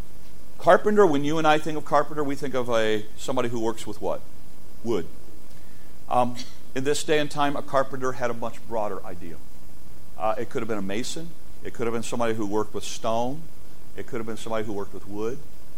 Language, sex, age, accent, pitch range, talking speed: English, male, 40-59, American, 120-145 Hz, 215 wpm